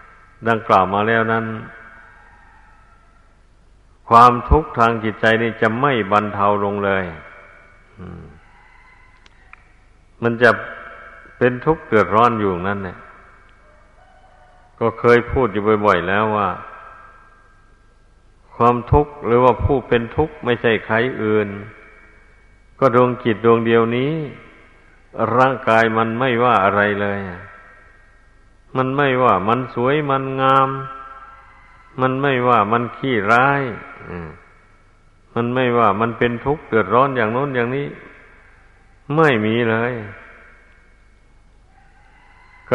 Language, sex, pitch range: Thai, male, 100-130 Hz